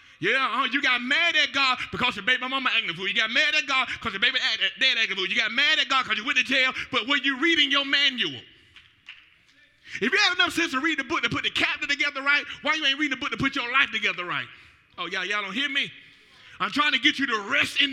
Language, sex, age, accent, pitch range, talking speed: English, male, 30-49, American, 215-300 Hz, 275 wpm